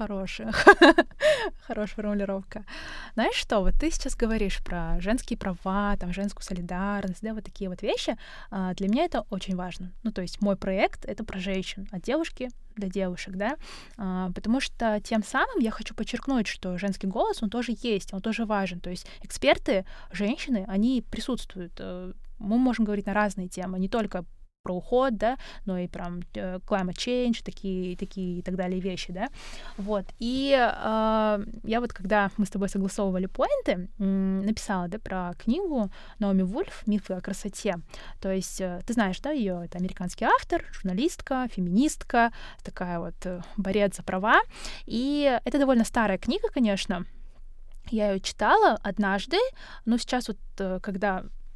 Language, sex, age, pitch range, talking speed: Russian, female, 20-39, 190-235 Hz, 155 wpm